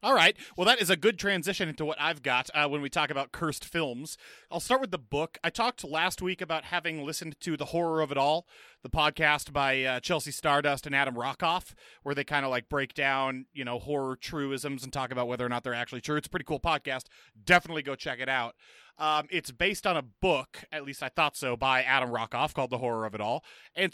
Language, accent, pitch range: English, American, 135-165 Hz